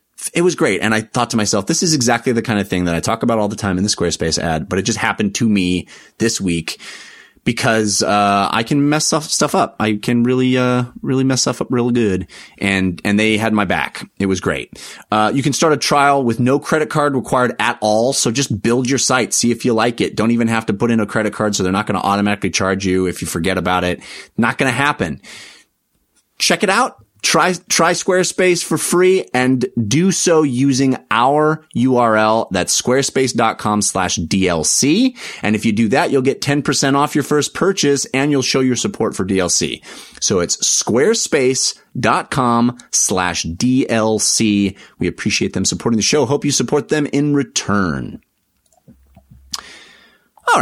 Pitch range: 105-145 Hz